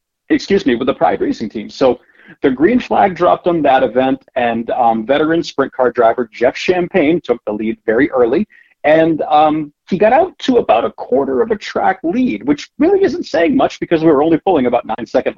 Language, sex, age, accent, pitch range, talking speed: English, male, 40-59, American, 120-180 Hz, 205 wpm